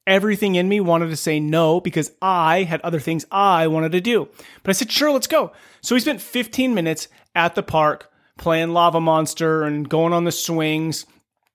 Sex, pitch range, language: male, 155-190 Hz, English